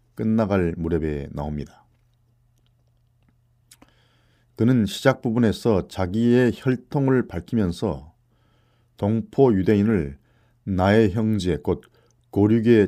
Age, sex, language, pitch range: 40-59, male, Korean, 95-120 Hz